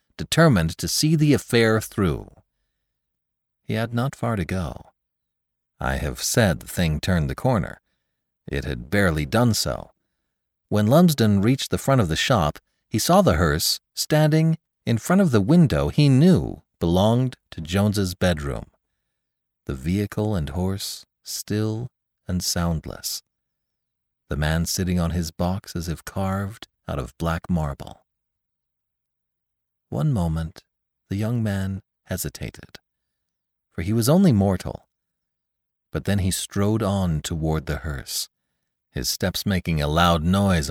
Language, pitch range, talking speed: English, 80-125 Hz, 140 wpm